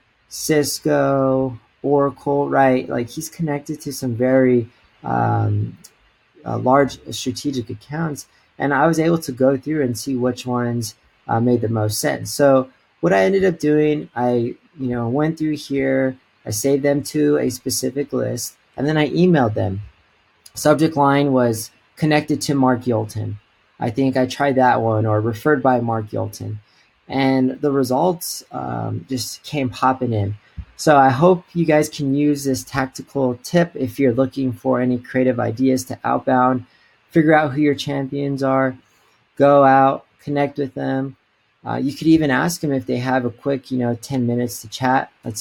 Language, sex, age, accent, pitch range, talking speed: English, male, 30-49, American, 115-140 Hz, 170 wpm